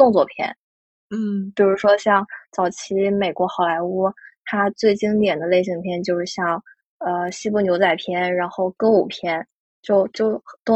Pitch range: 180-215 Hz